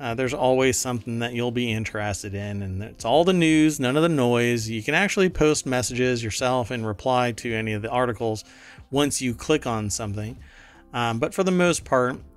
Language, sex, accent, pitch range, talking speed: English, male, American, 110-130 Hz, 205 wpm